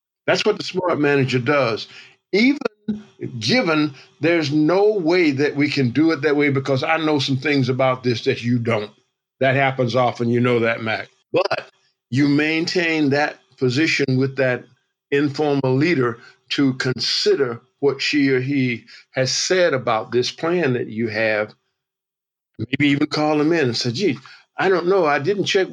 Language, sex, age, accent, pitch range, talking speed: English, male, 50-69, American, 125-155 Hz, 170 wpm